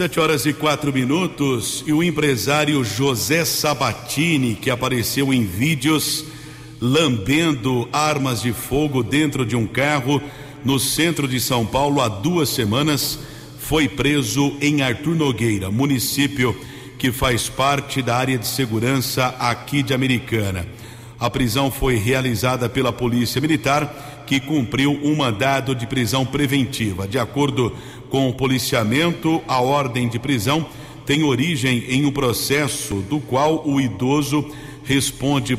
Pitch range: 125-145 Hz